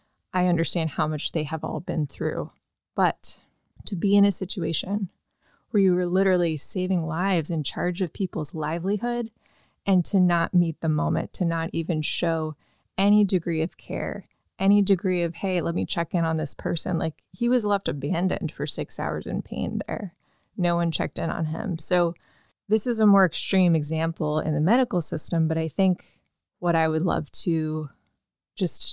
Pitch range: 160-195 Hz